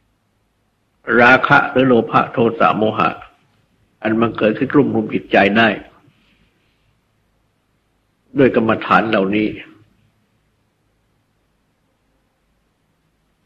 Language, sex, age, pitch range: Thai, male, 60-79, 105-120 Hz